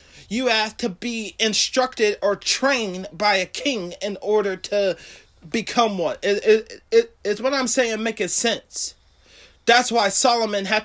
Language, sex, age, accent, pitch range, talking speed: English, male, 30-49, American, 215-275 Hz, 155 wpm